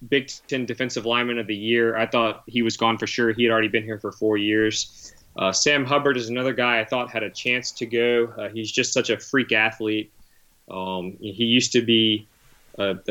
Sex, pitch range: male, 110-125 Hz